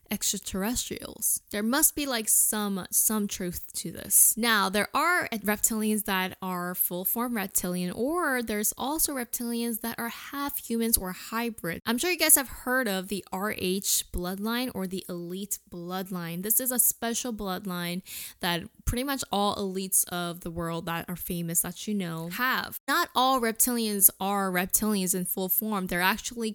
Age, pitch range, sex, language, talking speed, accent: 10-29, 185-235 Hz, female, English, 165 wpm, American